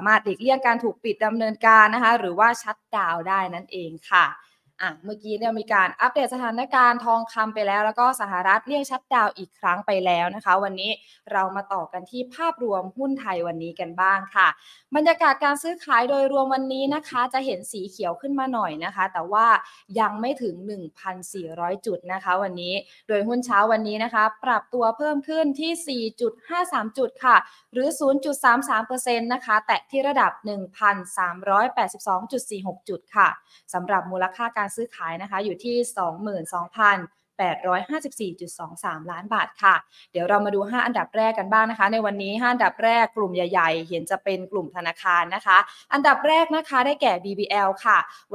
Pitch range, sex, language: 190-245 Hz, female, Thai